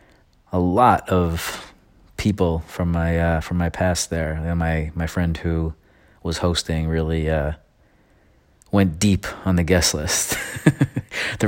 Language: English